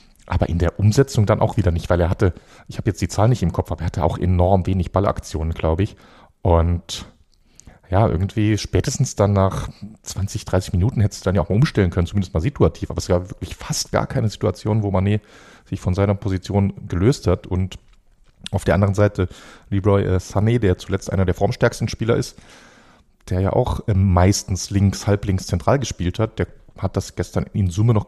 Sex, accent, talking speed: male, German, 200 wpm